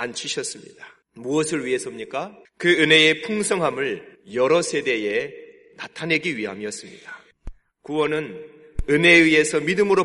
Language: Korean